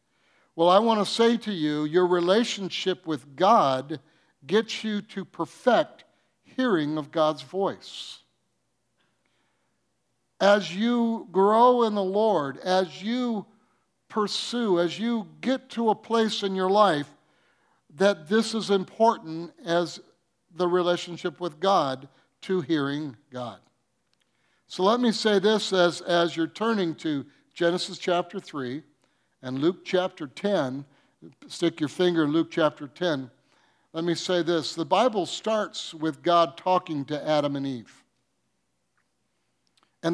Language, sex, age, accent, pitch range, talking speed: English, male, 60-79, American, 150-200 Hz, 130 wpm